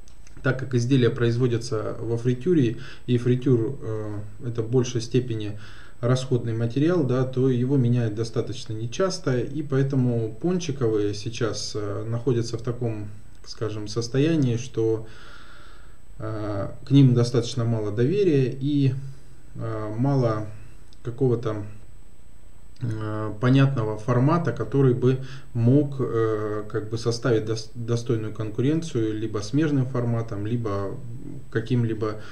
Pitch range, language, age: 110-130 Hz, Russian, 20-39